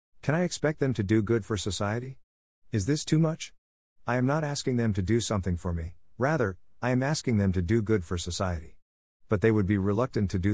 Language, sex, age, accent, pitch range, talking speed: English, male, 50-69, American, 90-120 Hz, 230 wpm